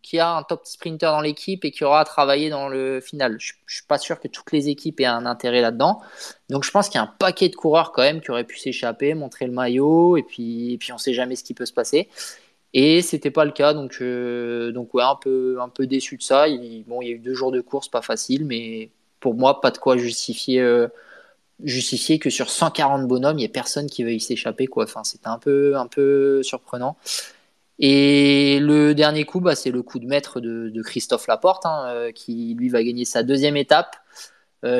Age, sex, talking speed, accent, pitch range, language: 20-39, male, 245 wpm, French, 120-155 Hz, French